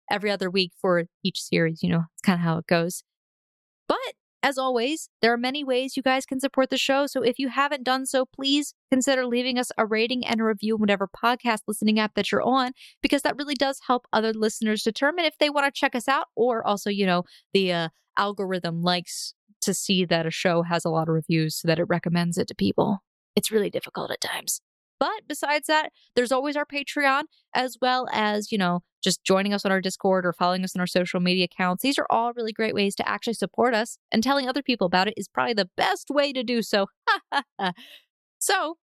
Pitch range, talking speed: 185-260 Hz, 225 wpm